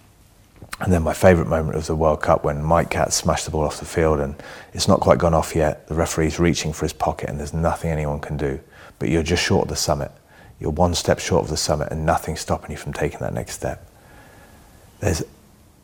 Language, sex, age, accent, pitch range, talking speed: English, male, 30-49, British, 80-90 Hz, 235 wpm